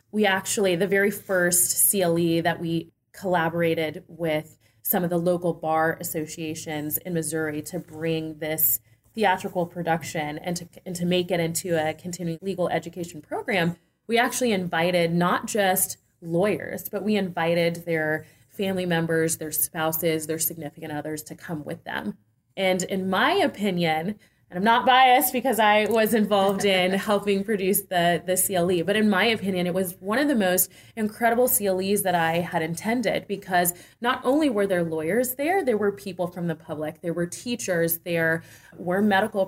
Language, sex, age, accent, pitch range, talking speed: English, female, 30-49, American, 165-195 Hz, 165 wpm